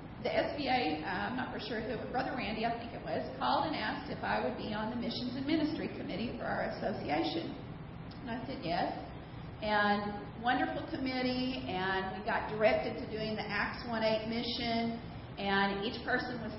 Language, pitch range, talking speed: English, 195-235 Hz, 190 wpm